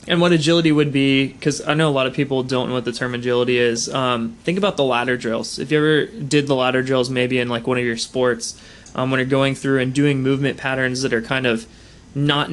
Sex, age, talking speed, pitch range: male, 20-39, 255 wpm, 120-140 Hz